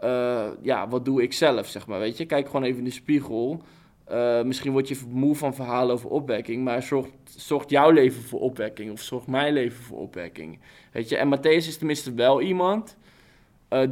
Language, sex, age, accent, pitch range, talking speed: Dutch, male, 20-39, Dutch, 125-150 Hz, 205 wpm